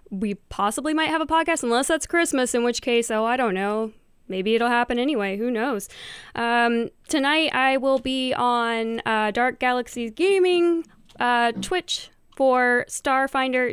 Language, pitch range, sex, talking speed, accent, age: English, 205-255 Hz, female, 155 wpm, American, 10-29